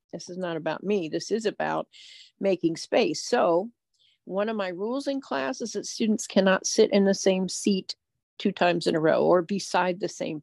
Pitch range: 165-210 Hz